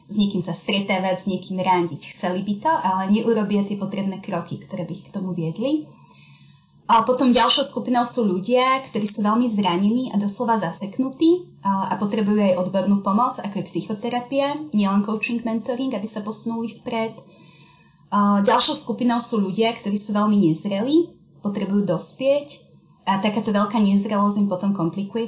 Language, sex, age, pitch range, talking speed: Slovak, female, 20-39, 190-235 Hz, 160 wpm